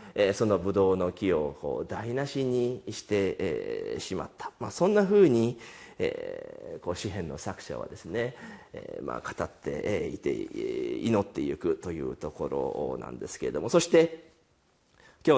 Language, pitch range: Japanese, 105-170 Hz